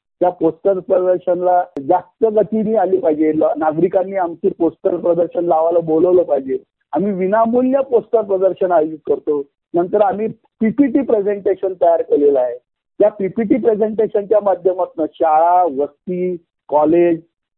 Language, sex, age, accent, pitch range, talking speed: Marathi, male, 50-69, native, 170-220 Hz, 115 wpm